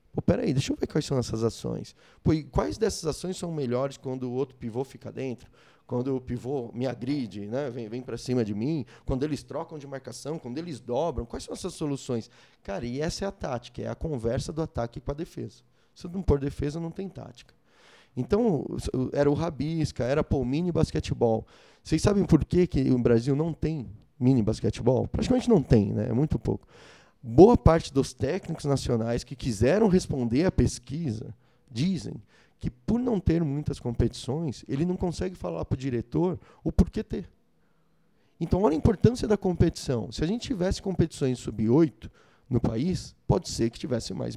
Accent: Brazilian